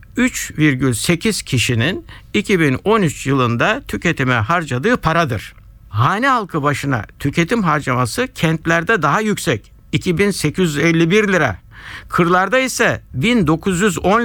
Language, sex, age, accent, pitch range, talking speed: Turkish, male, 60-79, native, 125-190 Hz, 85 wpm